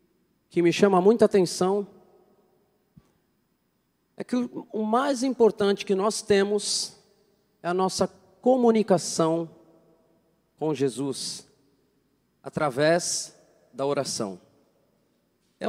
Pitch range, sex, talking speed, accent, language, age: 175-215 Hz, male, 90 wpm, Brazilian, Portuguese, 40-59